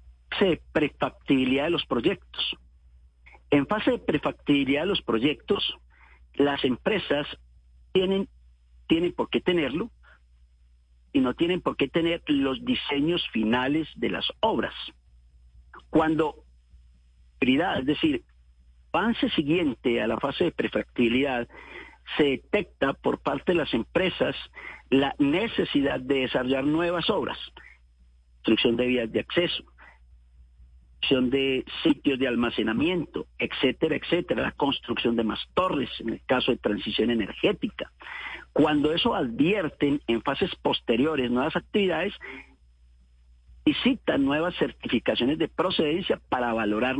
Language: Spanish